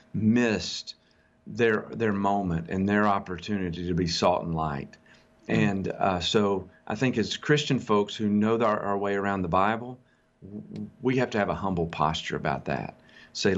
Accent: American